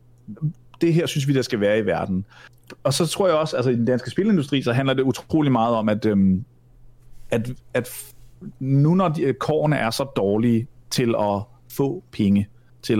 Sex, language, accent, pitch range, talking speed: male, Danish, native, 115-140 Hz, 195 wpm